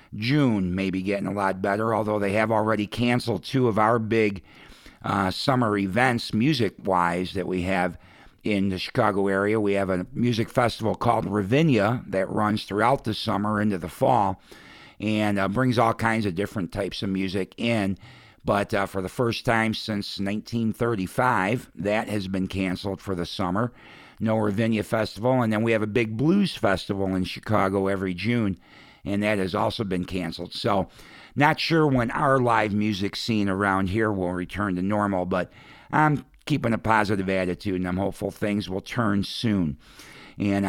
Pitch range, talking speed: 95-115 Hz, 175 wpm